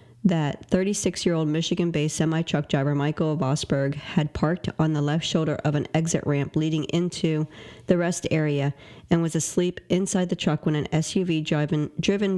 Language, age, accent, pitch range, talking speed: English, 40-59, American, 145-175 Hz, 155 wpm